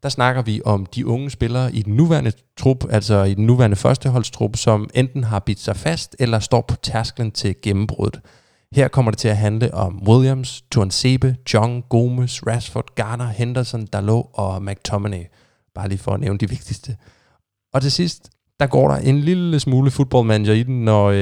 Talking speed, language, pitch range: 185 wpm, Danish, 105-130 Hz